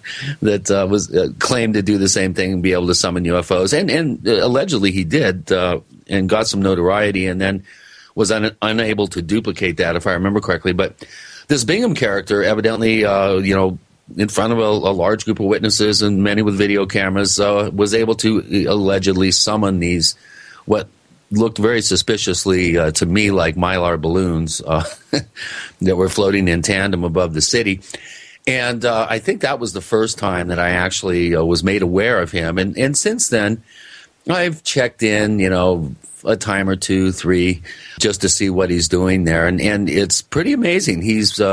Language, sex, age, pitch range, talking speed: English, male, 40-59, 90-105 Hz, 190 wpm